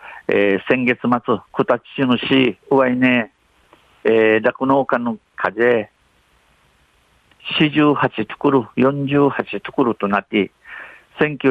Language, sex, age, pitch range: Japanese, male, 50-69, 115-145 Hz